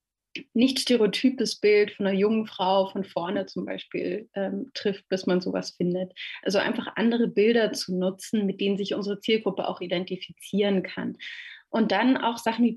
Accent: German